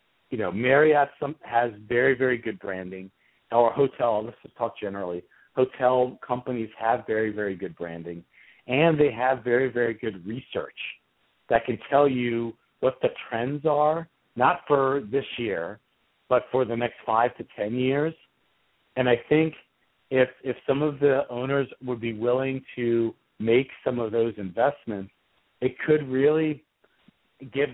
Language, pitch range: English, 110-135 Hz